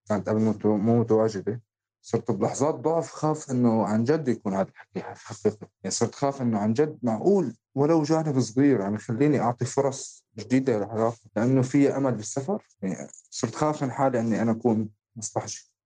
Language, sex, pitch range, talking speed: Arabic, male, 105-125 Hz, 170 wpm